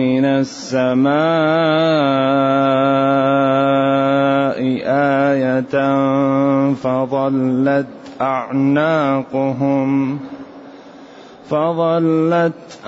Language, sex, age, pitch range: Arabic, male, 30-49, 130-140 Hz